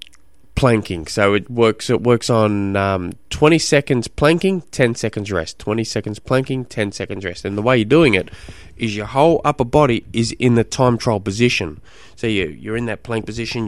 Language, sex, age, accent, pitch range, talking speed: English, male, 20-39, Australian, 105-125 Hz, 195 wpm